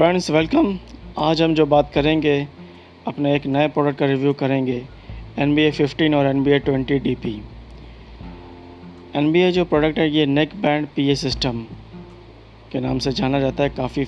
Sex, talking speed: male, 160 wpm